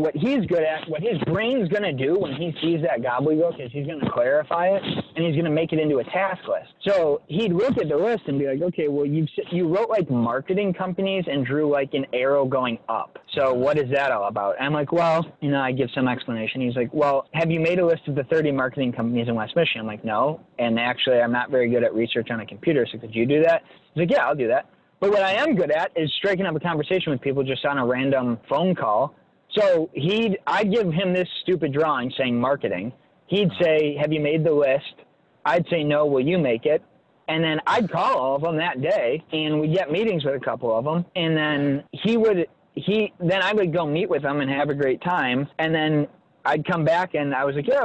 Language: English